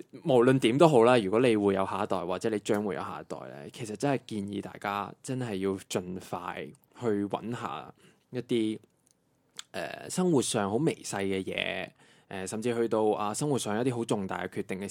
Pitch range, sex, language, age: 100-130 Hz, male, Chinese, 20-39